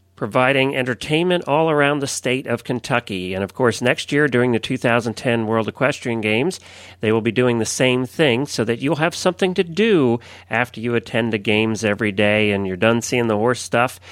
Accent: American